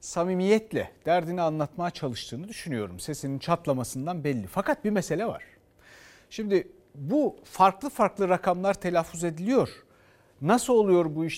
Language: Turkish